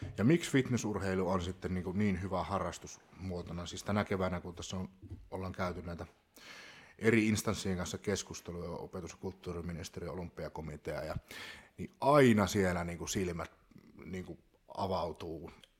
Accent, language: native, Finnish